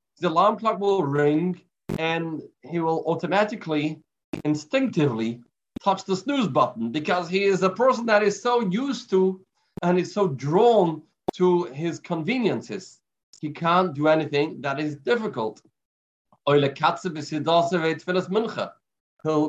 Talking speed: 120 wpm